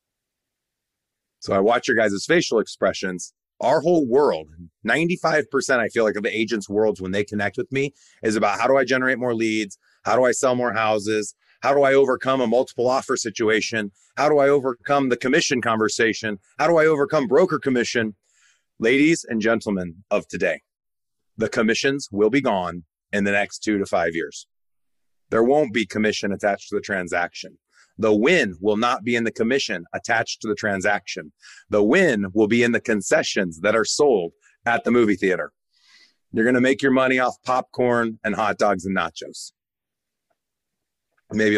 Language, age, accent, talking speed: English, 30-49, American, 180 wpm